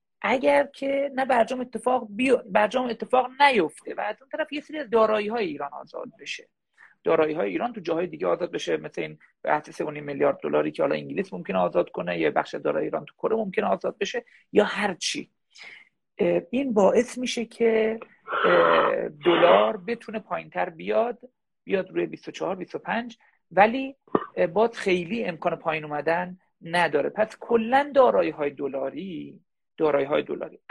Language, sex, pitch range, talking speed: Persian, male, 175-255 Hz, 145 wpm